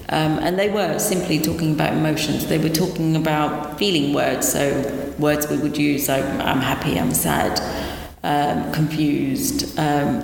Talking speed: 160 wpm